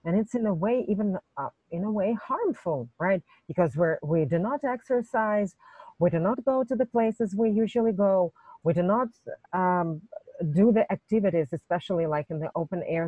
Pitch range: 165-210 Hz